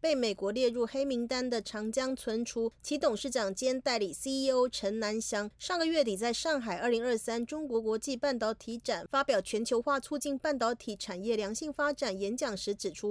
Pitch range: 230-285 Hz